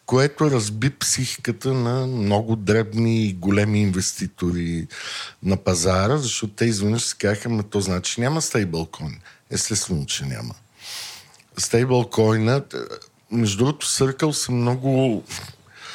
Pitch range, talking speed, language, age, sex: 100-120 Hz, 115 wpm, Bulgarian, 50-69, male